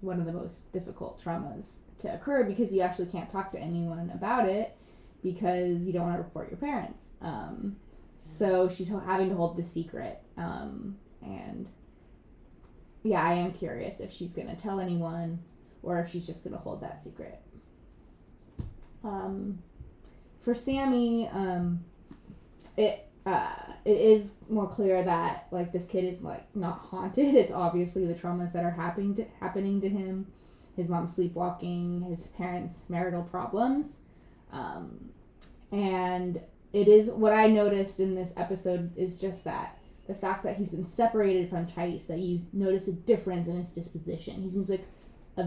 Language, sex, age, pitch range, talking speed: English, female, 20-39, 175-200 Hz, 160 wpm